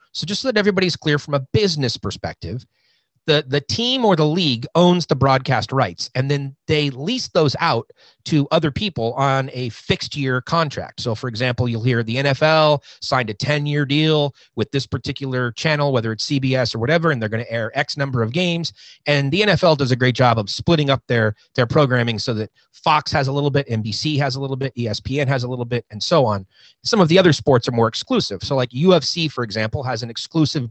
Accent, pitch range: American, 120-150 Hz